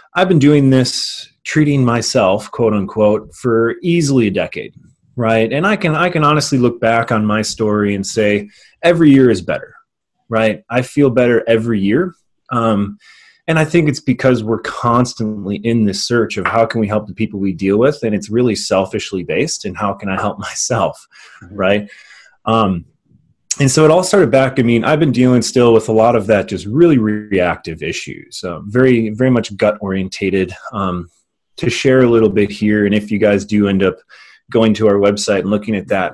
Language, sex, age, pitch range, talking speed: English, male, 30-49, 100-130 Hz, 200 wpm